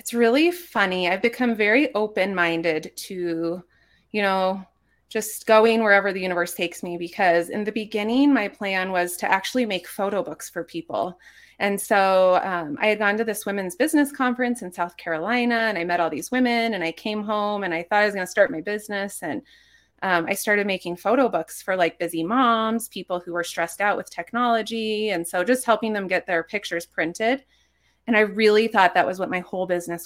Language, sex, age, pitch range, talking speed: English, female, 30-49, 175-220 Hz, 205 wpm